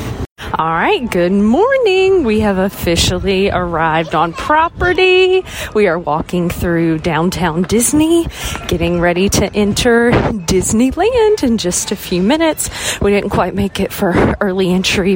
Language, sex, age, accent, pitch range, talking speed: English, female, 30-49, American, 160-225 Hz, 135 wpm